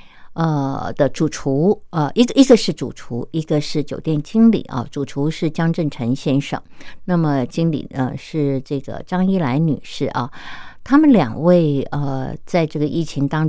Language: Japanese